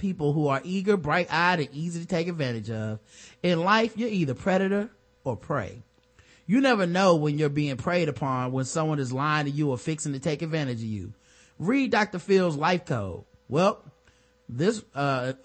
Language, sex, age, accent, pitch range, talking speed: English, male, 30-49, American, 140-195 Hz, 180 wpm